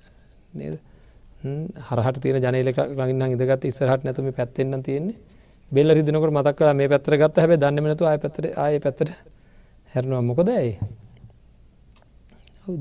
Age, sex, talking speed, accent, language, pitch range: 40-59, male, 145 wpm, Indian, English, 135-175 Hz